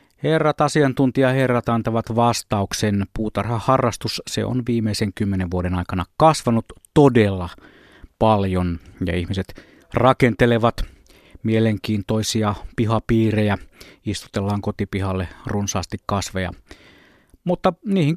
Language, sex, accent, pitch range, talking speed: Finnish, male, native, 95-130 Hz, 90 wpm